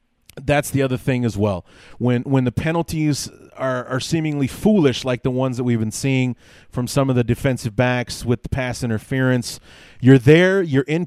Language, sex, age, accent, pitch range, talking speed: English, male, 30-49, American, 125-160 Hz, 190 wpm